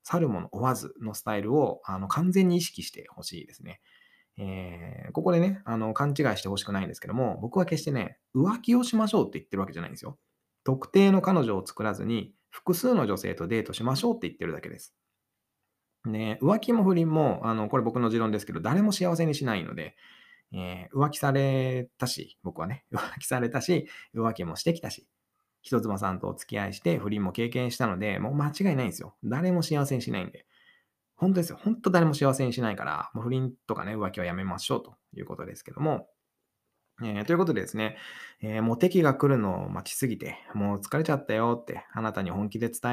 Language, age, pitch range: Japanese, 20-39, 110-170 Hz